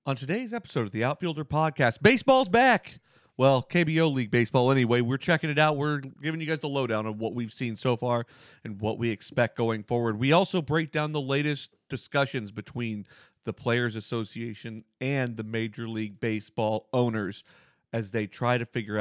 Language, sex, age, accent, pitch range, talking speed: English, male, 40-59, American, 115-150 Hz, 185 wpm